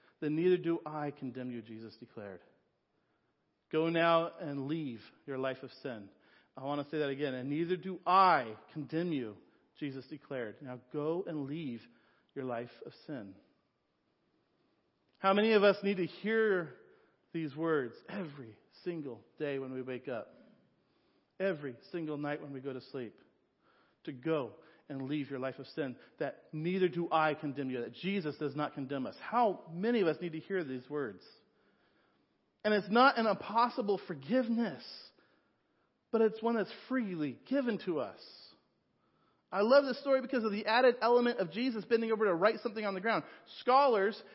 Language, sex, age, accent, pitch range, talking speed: English, male, 40-59, American, 140-215 Hz, 170 wpm